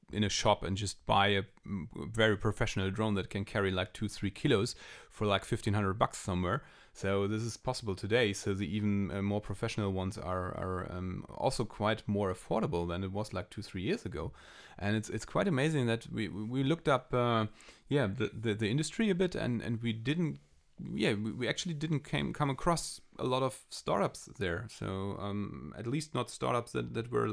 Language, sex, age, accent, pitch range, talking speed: English, male, 30-49, German, 100-115 Hz, 195 wpm